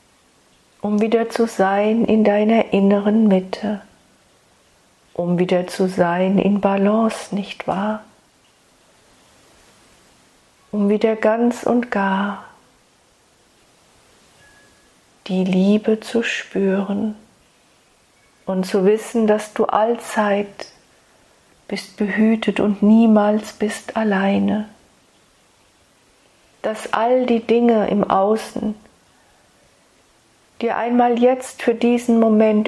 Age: 40-59